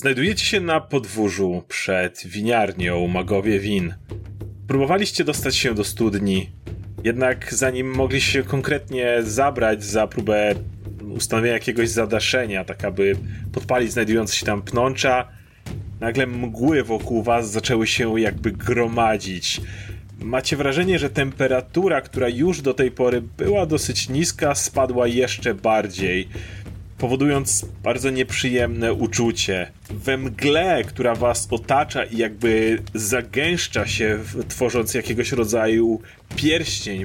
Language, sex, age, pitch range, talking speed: Polish, male, 30-49, 105-135 Hz, 115 wpm